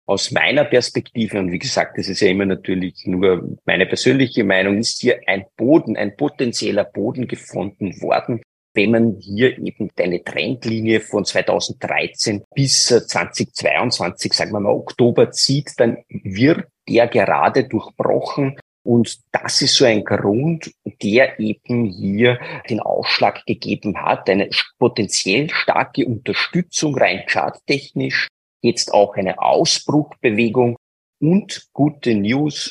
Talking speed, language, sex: 130 wpm, German, male